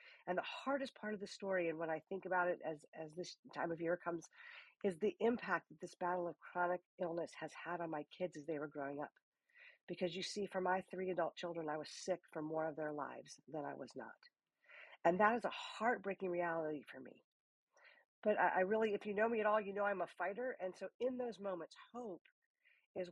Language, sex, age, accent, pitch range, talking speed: English, female, 50-69, American, 170-230 Hz, 230 wpm